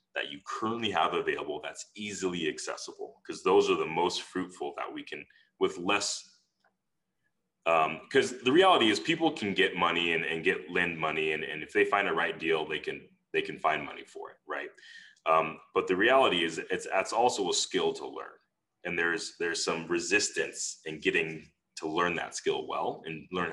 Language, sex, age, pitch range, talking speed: English, male, 30-49, 355-415 Hz, 195 wpm